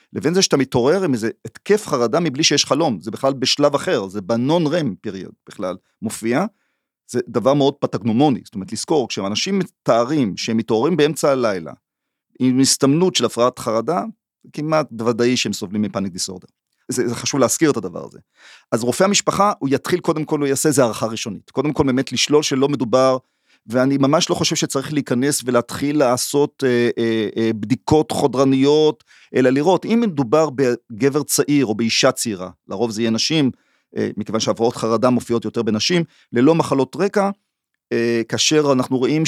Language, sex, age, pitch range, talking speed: Hebrew, male, 40-59, 115-155 Hz, 170 wpm